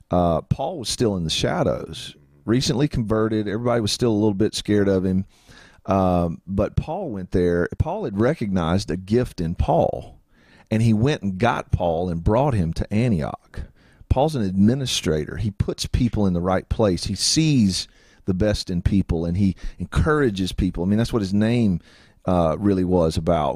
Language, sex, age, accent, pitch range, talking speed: English, male, 40-59, American, 90-110 Hz, 185 wpm